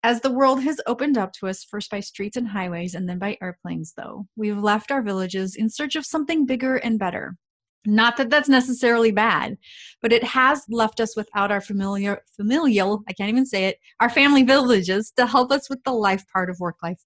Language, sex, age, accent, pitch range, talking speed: English, female, 30-49, American, 190-250 Hz, 210 wpm